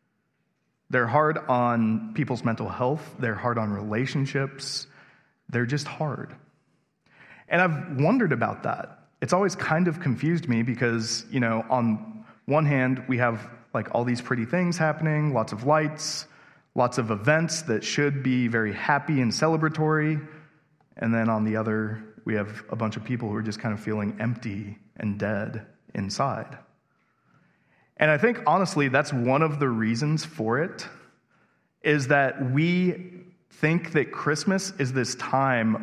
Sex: male